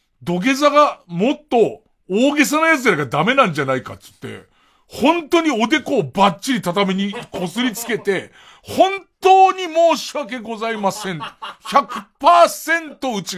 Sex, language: male, Japanese